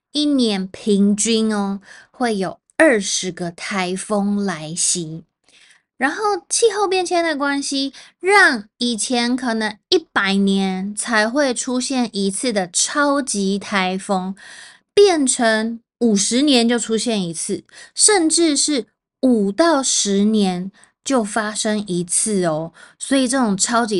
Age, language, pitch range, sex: 20-39, Chinese, 195-250 Hz, female